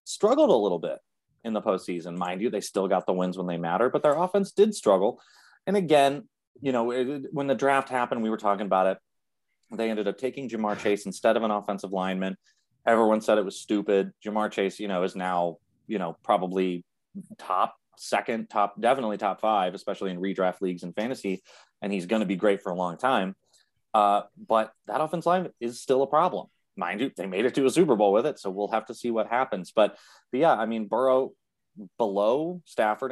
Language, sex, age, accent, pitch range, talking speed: English, male, 30-49, American, 100-140 Hz, 210 wpm